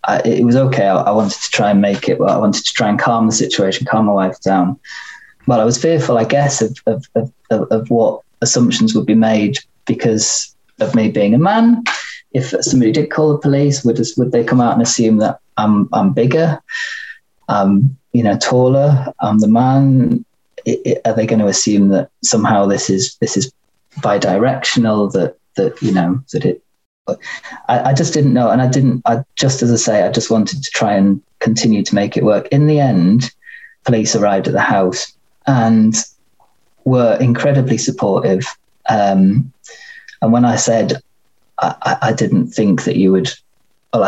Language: English